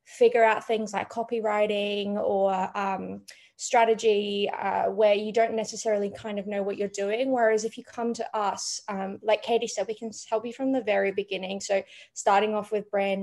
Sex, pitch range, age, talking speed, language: female, 195-220 Hz, 20-39, 190 wpm, English